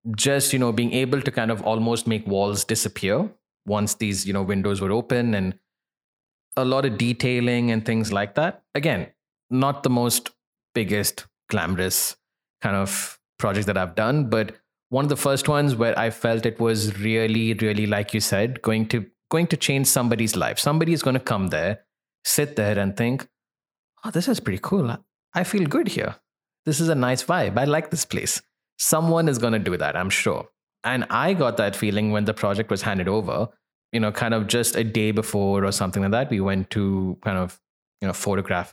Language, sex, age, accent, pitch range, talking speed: English, male, 20-39, Indian, 100-125 Hz, 200 wpm